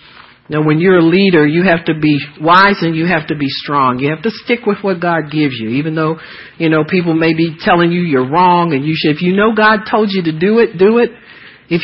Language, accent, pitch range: English, American, 160-220 Hz